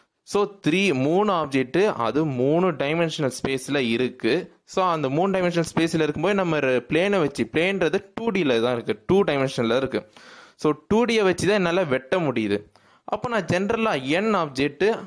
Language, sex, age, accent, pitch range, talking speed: English, male, 20-39, Indian, 130-185 Hz, 130 wpm